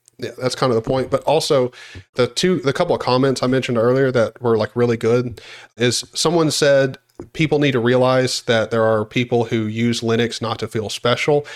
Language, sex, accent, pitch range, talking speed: English, male, American, 110-125 Hz, 210 wpm